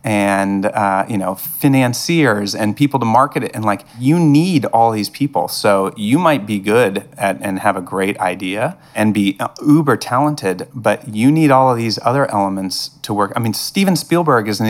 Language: English